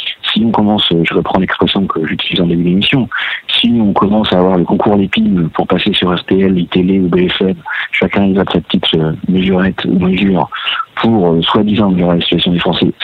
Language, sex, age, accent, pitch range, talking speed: French, male, 50-69, French, 90-110 Hz, 190 wpm